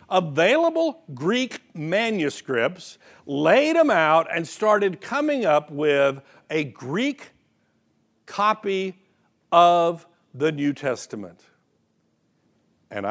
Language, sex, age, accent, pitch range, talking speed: English, male, 60-79, American, 140-215 Hz, 85 wpm